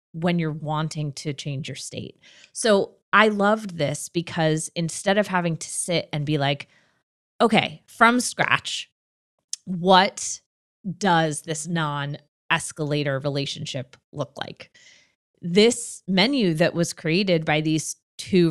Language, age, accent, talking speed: English, 20-39, American, 125 wpm